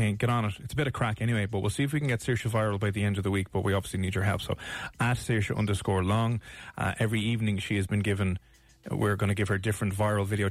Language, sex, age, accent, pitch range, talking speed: English, male, 30-49, Irish, 105-130 Hz, 285 wpm